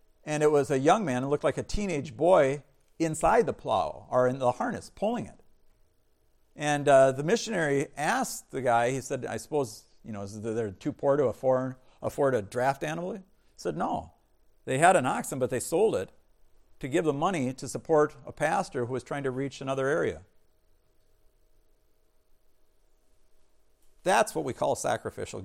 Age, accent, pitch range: 60-79, American, 130-200 Hz